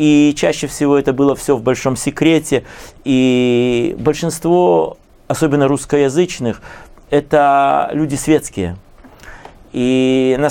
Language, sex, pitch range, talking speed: Russian, male, 130-155 Hz, 105 wpm